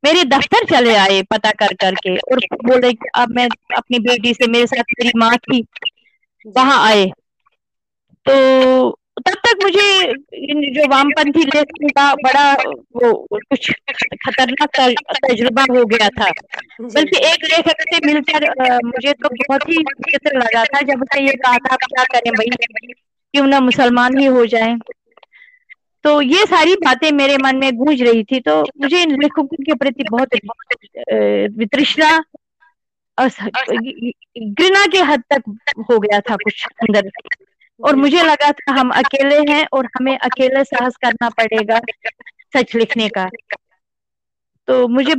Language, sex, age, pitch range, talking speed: Hindi, female, 20-39, 240-300 Hz, 145 wpm